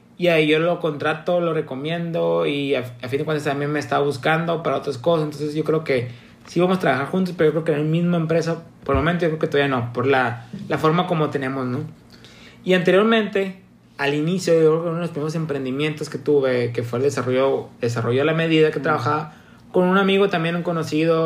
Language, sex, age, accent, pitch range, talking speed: Spanish, male, 30-49, Mexican, 135-165 Hz, 230 wpm